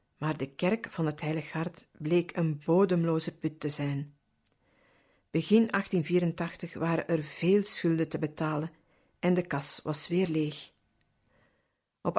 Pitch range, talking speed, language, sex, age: 155-185 Hz, 140 wpm, Dutch, female, 50-69